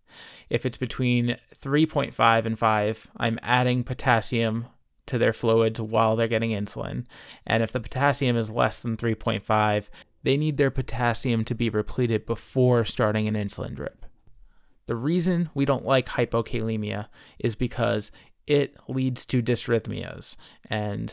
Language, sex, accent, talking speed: English, male, American, 140 wpm